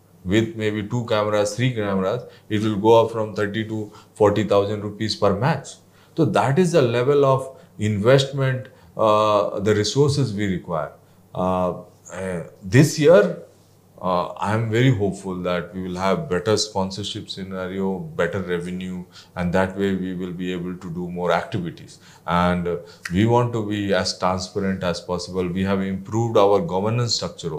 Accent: Indian